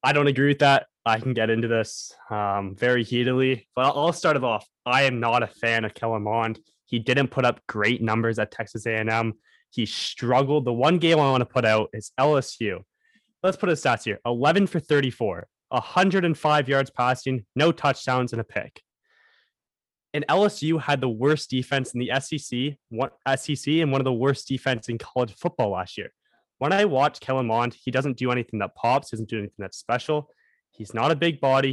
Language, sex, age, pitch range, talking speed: English, male, 20-39, 115-140 Hz, 200 wpm